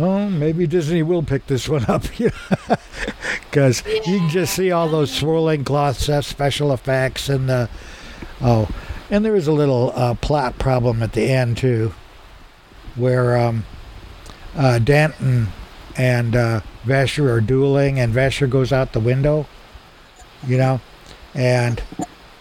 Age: 60-79